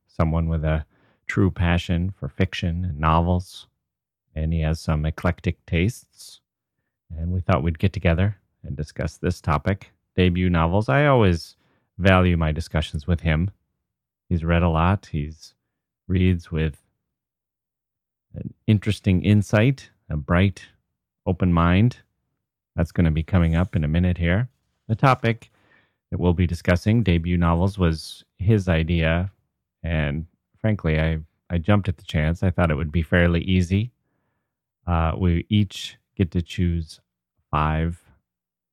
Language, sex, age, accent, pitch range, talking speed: English, male, 30-49, American, 80-95 Hz, 140 wpm